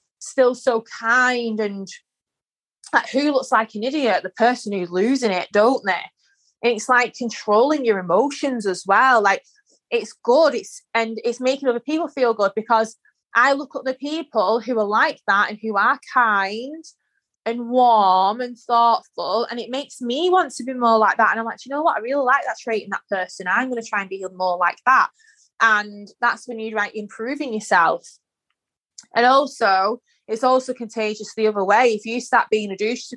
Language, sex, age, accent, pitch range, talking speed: English, female, 20-39, British, 210-260 Hz, 200 wpm